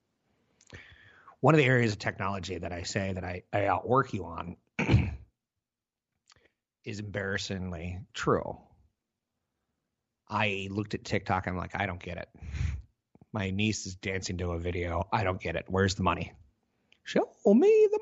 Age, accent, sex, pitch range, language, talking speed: 30-49, American, male, 90-110 Hz, English, 150 wpm